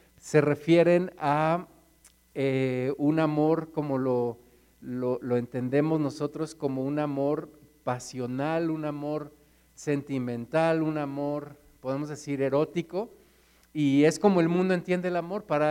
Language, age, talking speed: Spanish, 50-69, 120 wpm